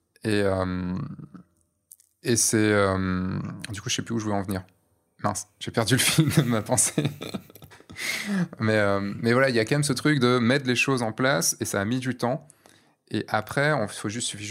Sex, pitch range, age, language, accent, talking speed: male, 100-125 Hz, 20-39, French, French, 210 wpm